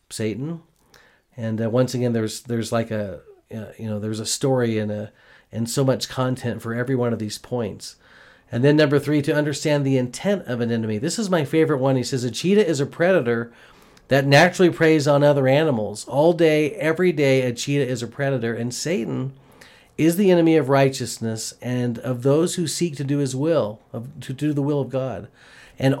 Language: English